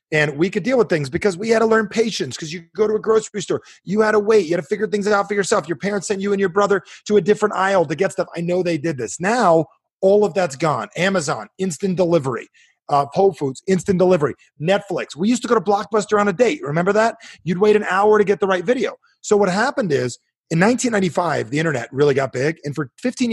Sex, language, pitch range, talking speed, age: male, English, 140-200 Hz, 250 wpm, 30-49